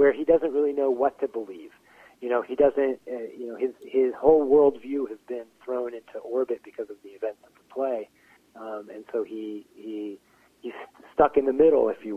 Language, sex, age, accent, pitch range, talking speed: English, male, 40-59, American, 115-150 Hz, 210 wpm